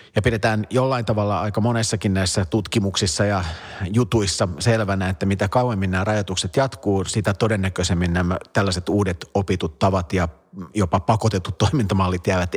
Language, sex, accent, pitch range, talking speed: Finnish, male, native, 95-110 Hz, 140 wpm